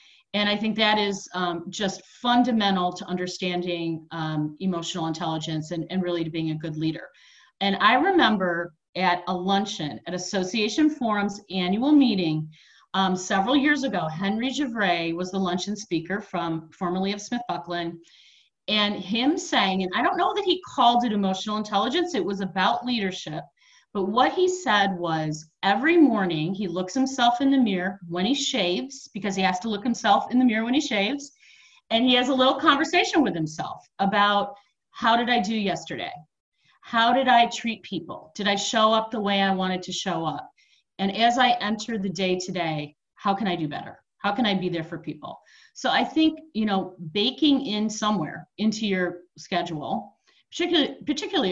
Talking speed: 180 wpm